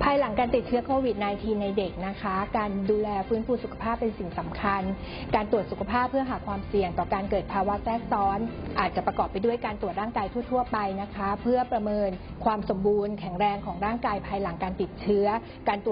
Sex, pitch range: female, 195-235 Hz